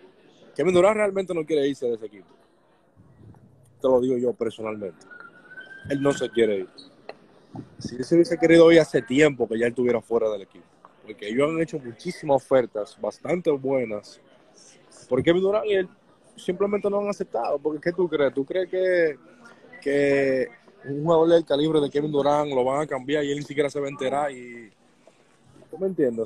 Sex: male